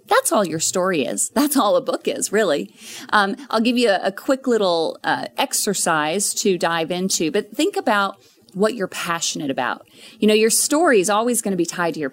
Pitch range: 190-265 Hz